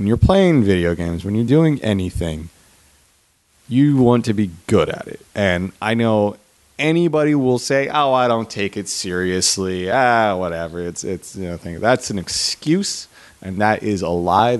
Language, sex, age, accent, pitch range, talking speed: English, male, 30-49, American, 90-125 Hz, 175 wpm